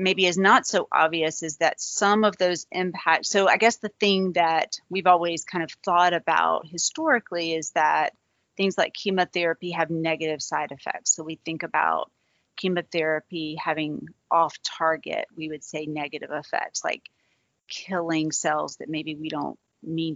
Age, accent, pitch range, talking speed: 30-49, American, 160-185 Hz, 160 wpm